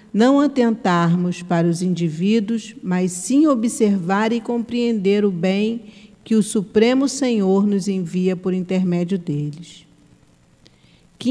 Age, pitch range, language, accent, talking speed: 50-69, 165-220 Hz, Portuguese, Brazilian, 115 wpm